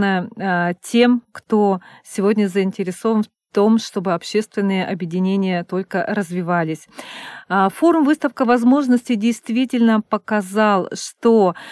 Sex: female